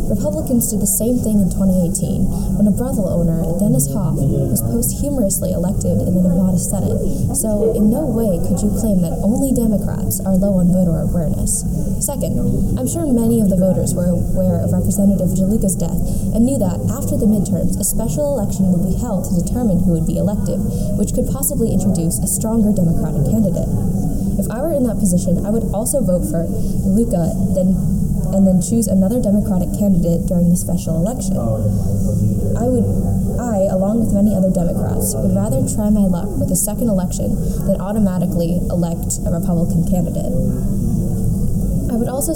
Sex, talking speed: female, 175 wpm